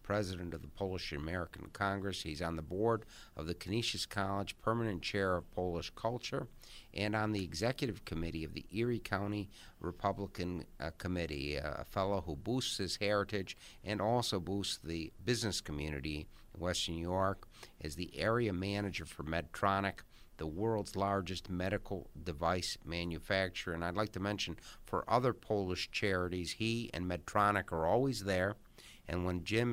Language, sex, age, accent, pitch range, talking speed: English, male, 50-69, American, 85-110 Hz, 155 wpm